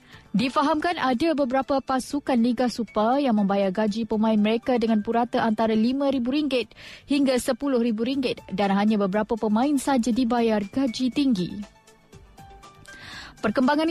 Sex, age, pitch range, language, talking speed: female, 20-39, 220-270 Hz, Malay, 110 wpm